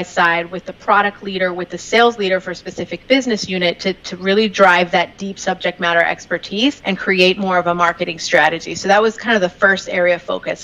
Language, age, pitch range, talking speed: English, 30-49, 180-210 Hz, 225 wpm